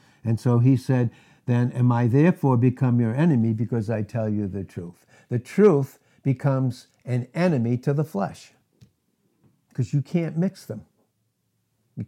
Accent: American